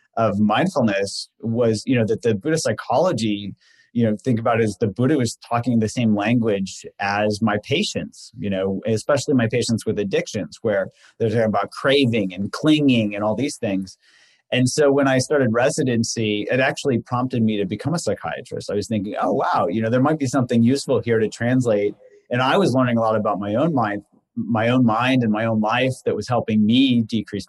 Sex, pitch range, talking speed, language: male, 105-130 Hz, 205 wpm, English